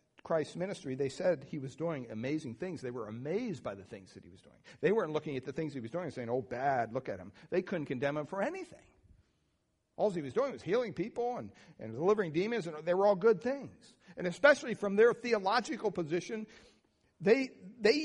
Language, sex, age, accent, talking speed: English, male, 60-79, American, 220 wpm